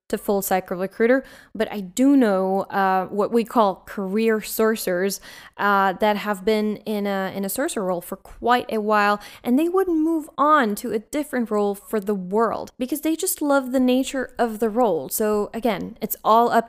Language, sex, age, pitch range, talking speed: English, female, 10-29, 190-225 Hz, 195 wpm